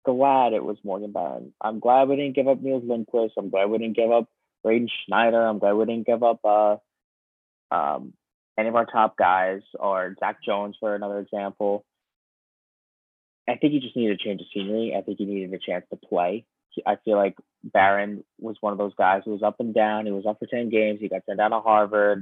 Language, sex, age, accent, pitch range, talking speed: English, male, 20-39, American, 100-115 Hz, 225 wpm